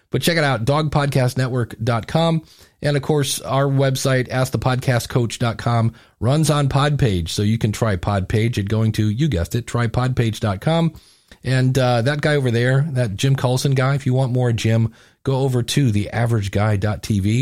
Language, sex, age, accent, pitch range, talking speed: English, male, 40-59, American, 105-135 Hz, 155 wpm